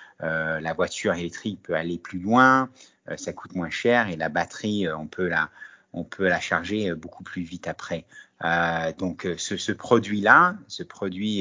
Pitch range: 85-100 Hz